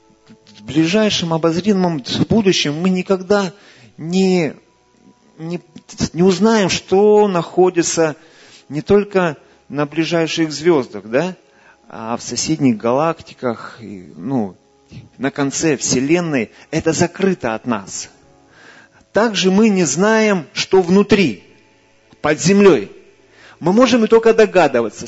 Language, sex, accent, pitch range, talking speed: Russian, male, native, 140-195 Hz, 100 wpm